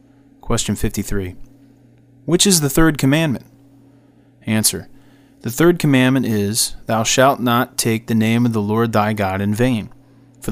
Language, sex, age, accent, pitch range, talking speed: English, male, 30-49, American, 110-135 Hz, 150 wpm